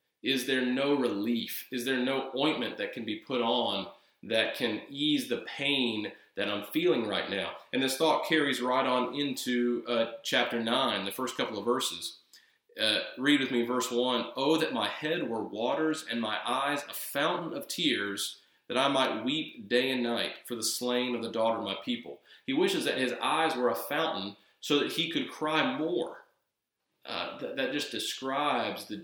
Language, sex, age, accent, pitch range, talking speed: English, male, 30-49, American, 120-180 Hz, 190 wpm